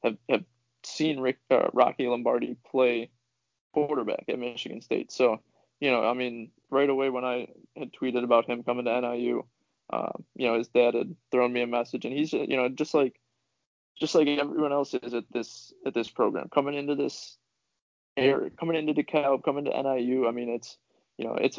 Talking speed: 190 wpm